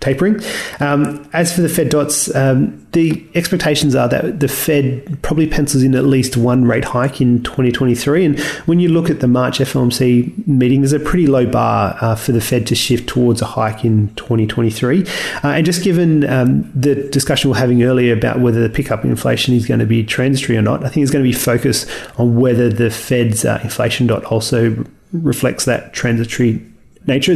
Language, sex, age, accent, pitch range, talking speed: English, male, 30-49, Australian, 120-145 Hz, 195 wpm